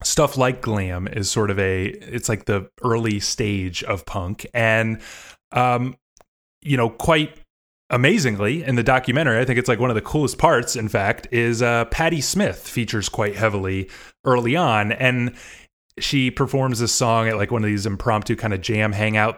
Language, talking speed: English, 180 wpm